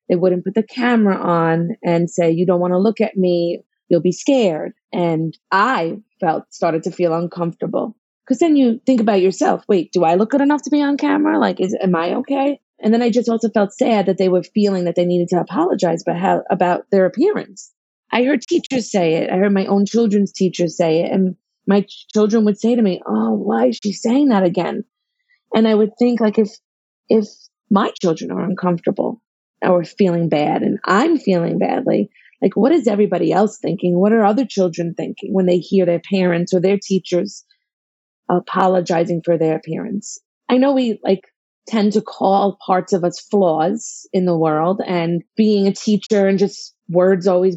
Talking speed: 195 wpm